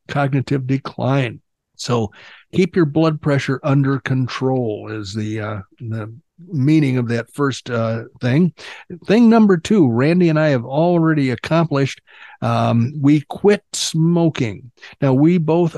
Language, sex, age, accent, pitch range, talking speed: English, male, 60-79, American, 125-155 Hz, 135 wpm